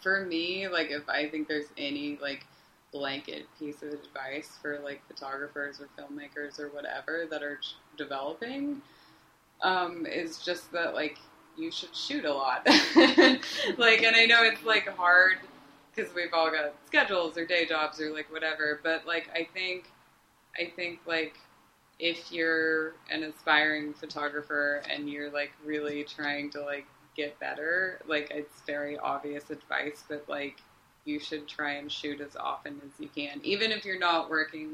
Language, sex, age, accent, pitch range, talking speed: English, female, 20-39, American, 150-175 Hz, 160 wpm